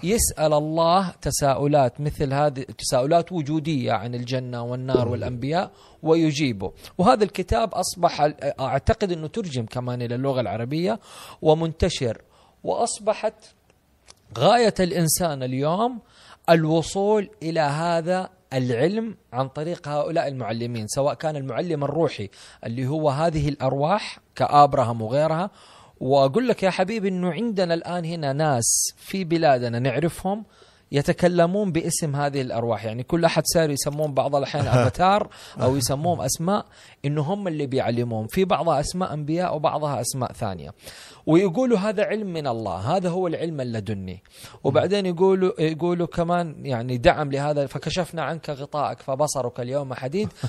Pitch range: 130-175 Hz